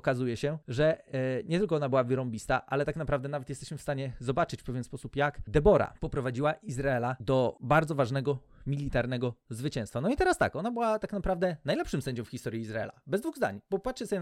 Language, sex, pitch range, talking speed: Polish, male, 130-165 Hz, 200 wpm